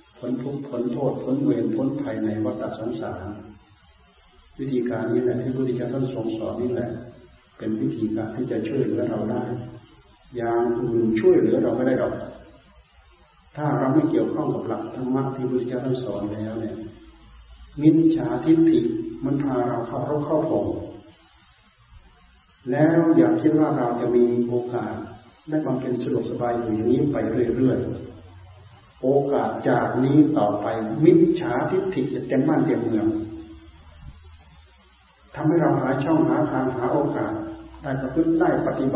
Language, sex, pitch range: Thai, male, 110-145 Hz